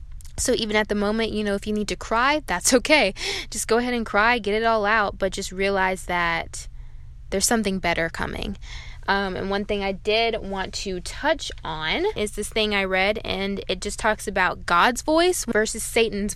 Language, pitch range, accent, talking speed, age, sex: English, 185-245 Hz, American, 200 wpm, 10-29, female